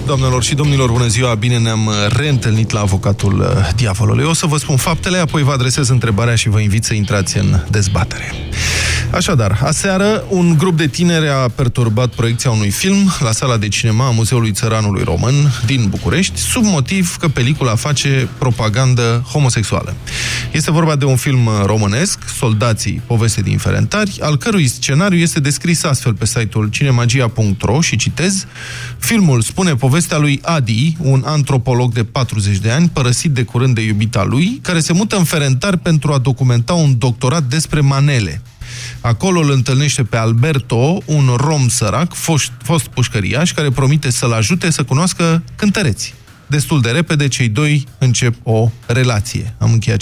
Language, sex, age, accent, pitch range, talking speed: Romanian, male, 20-39, native, 115-150 Hz, 160 wpm